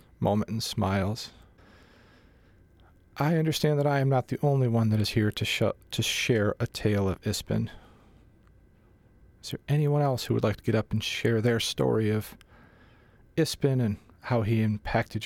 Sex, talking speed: male, 170 wpm